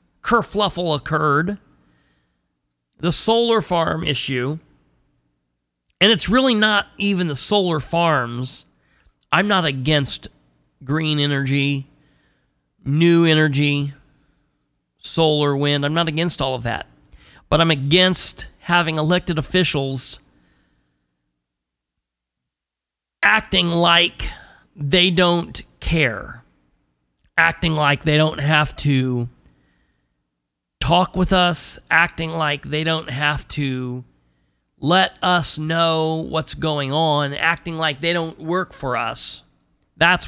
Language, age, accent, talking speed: English, 40-59, American, 105 wpm